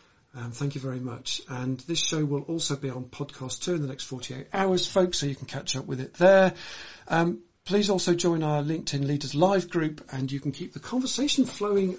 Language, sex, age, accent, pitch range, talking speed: English, male, 50-69, British, 135-170 Hz, 220 wpm